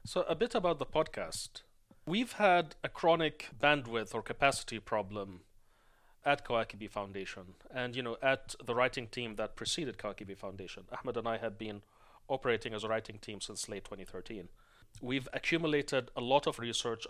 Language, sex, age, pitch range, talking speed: English, male, 30-49, 105-130 Hz, 165 wpm